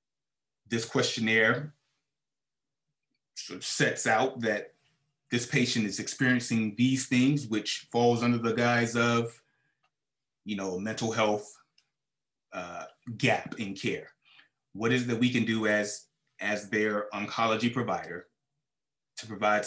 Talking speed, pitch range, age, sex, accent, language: 125 wpm, 105-135 Hz, 30-49, male, American, English